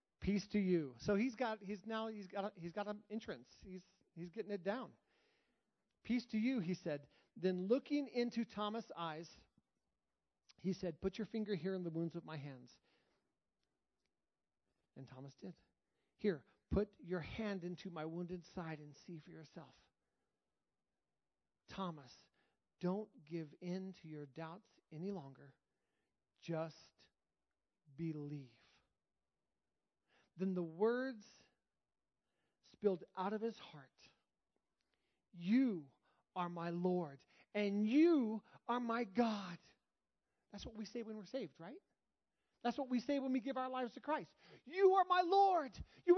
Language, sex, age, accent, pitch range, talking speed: English, male, 40-59, American, 170-245 Hz, 140 wpm